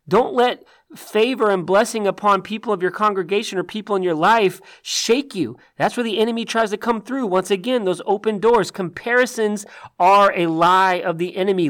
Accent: American